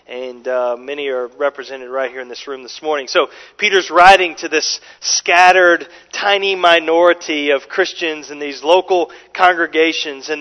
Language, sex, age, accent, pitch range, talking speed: English, male, 40-59, American, 150-195 Hz, 155 wpm